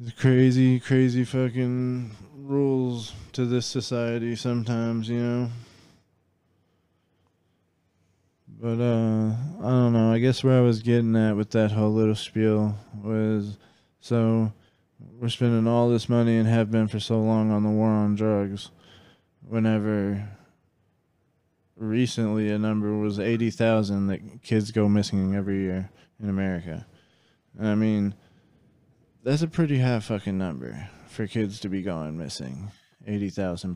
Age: 20-39